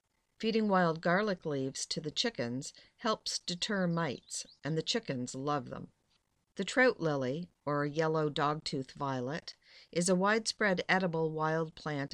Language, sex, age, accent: English, female, 50-69, American